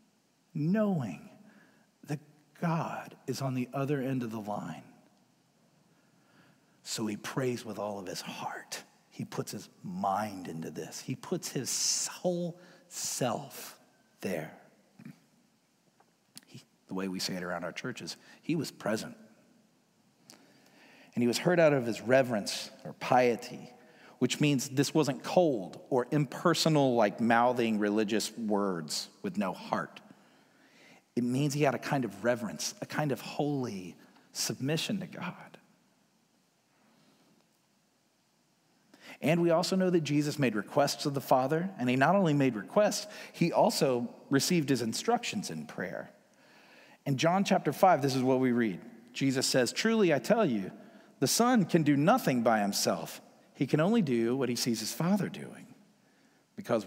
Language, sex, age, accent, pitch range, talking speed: English, male, 50-69, American, 125-180 Hz, 145 wpm